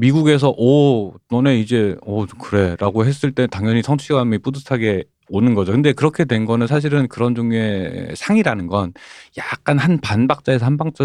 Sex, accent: male, native